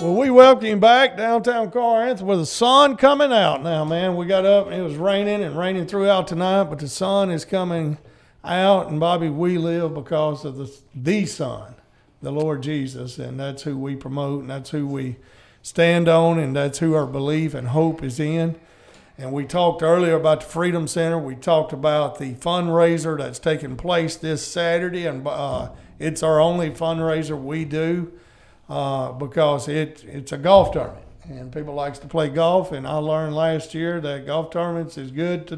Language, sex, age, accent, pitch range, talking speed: English, male, 50-69, American, 150-185 Hz, 190 wpm